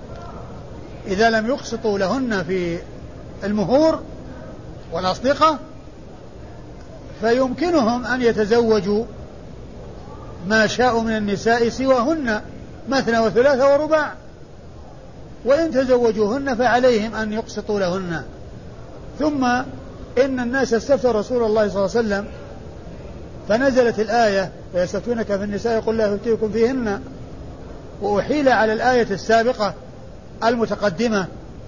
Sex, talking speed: male, 90 wpm